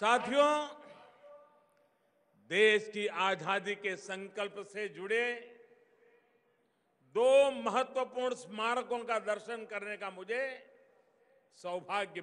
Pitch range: 190-260 Hz